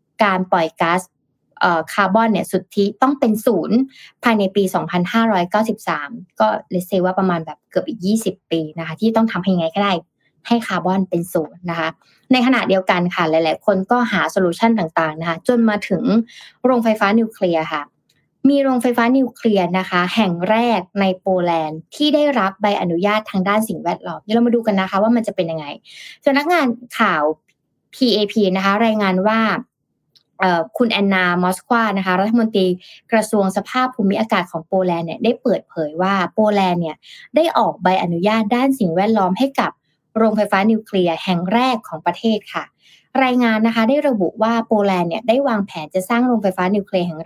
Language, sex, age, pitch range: Thai, female, 20-39, 180-225 Hz